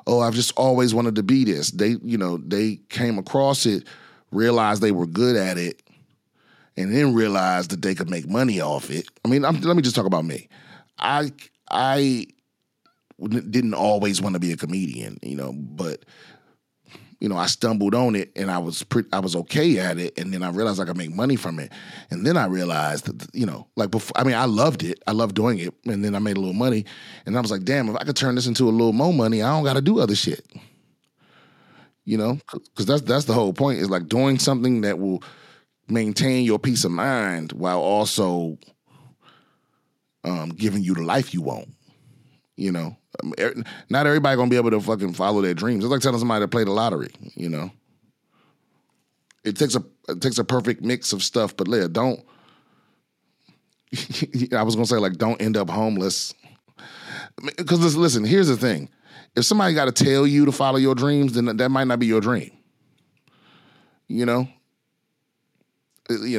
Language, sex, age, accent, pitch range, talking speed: English, male, 30-49, American, 100-130 Hz, 205 wpm